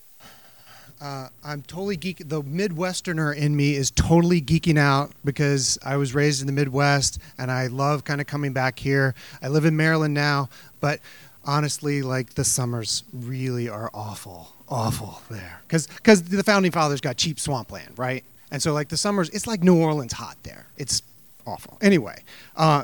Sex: male